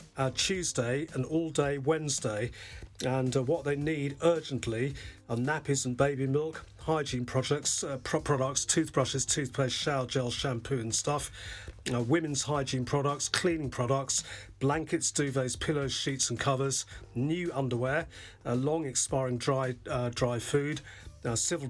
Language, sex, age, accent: English, male, 40-59, British